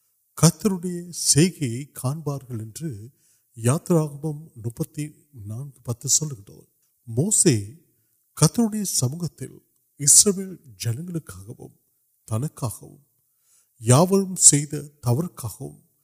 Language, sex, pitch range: Urdu, male, 120-160 Hz